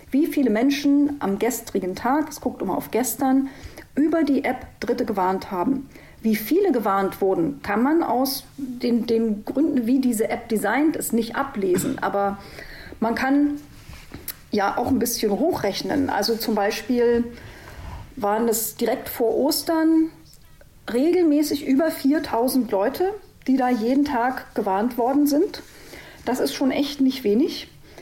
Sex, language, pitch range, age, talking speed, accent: female, German, 225-290 Hz, 40-59, 145 wpm, German